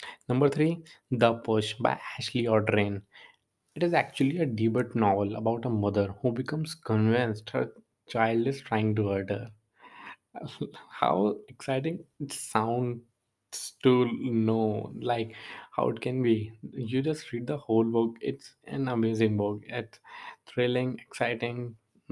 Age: 20-39